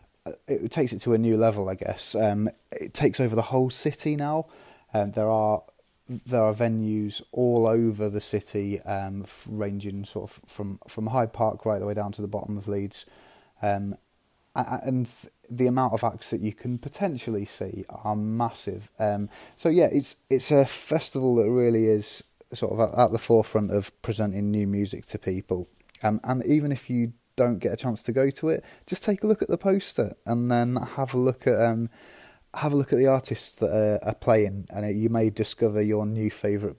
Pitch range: 105-125 Hz